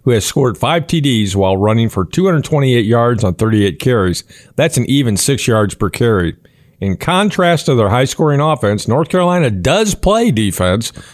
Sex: male